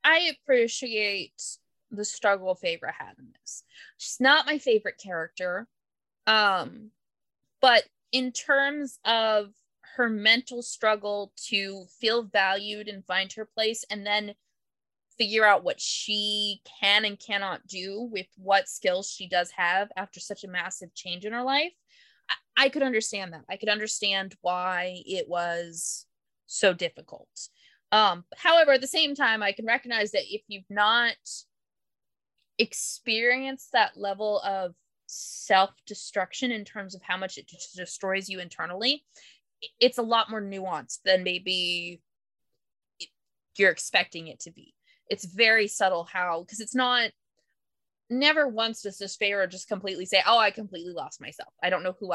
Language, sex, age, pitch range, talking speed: English, female, 20-39, 185-235 Hz, 150 wpm